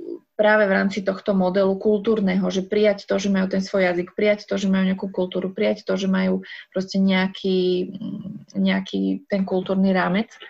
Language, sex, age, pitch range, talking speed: Slovak, female, 20-39, 185-210 Hz, 170 wpm